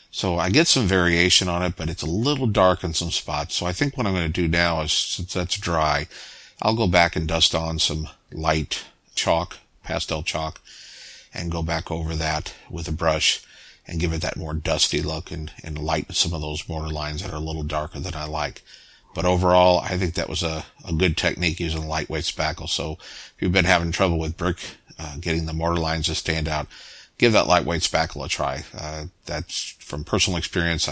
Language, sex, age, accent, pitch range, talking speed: English, male, 50-69, American, 80-90 Hz, 215 wpm